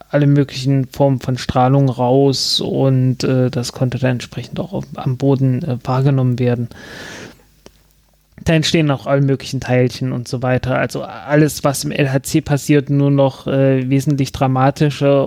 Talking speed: 150 wpm